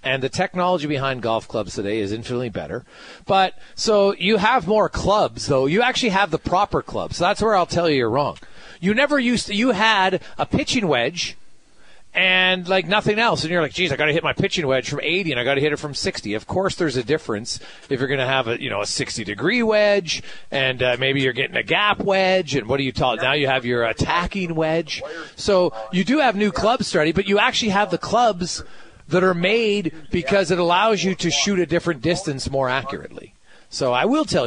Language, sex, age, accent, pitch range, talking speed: English, male, 40-59, American, 140-200 Hz, 230 wpm